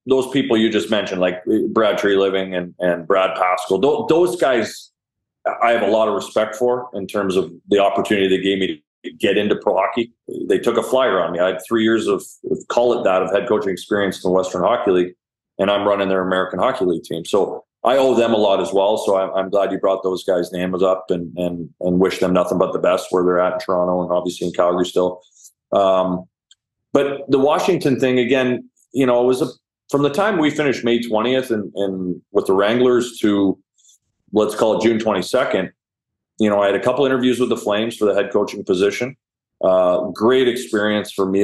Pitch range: 95-115 Hz